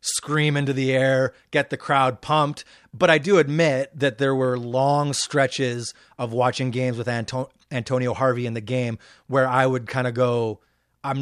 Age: 30-49